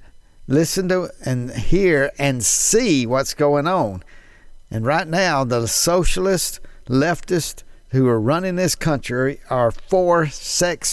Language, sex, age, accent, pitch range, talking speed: English, male, 50-69, American, 115-155 Hz, 125 wpm